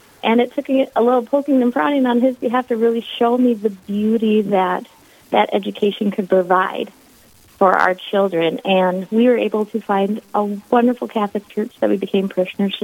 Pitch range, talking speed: 195-235 Hz, 180 wpm